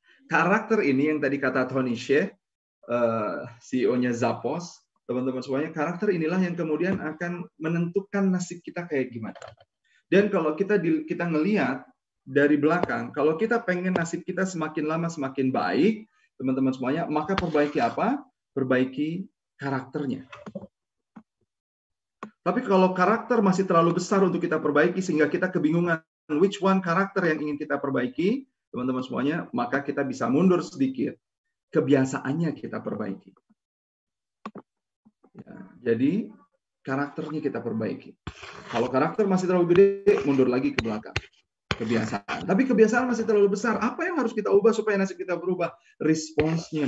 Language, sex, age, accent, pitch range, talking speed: Indonesian, male, 30-49, native, 140-195 Hz, 130 wpm